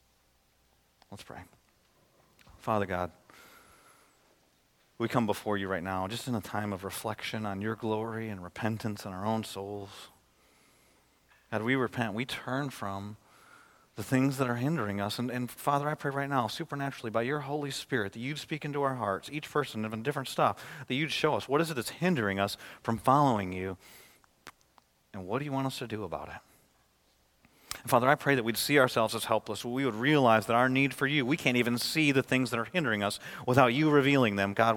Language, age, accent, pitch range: English, 40-59, American, 110-150 Hz